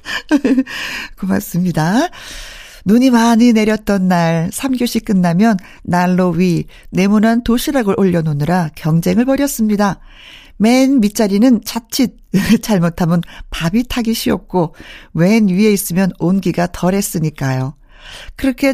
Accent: native